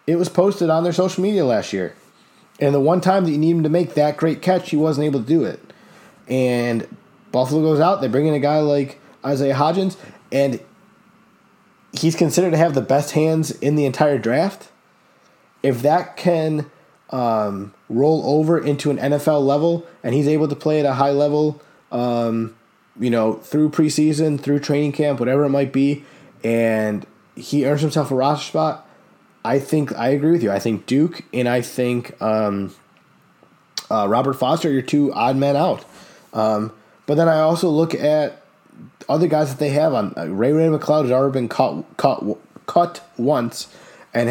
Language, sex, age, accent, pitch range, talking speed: English, male, 20-39, American, 125-155 Hz, 185 wpm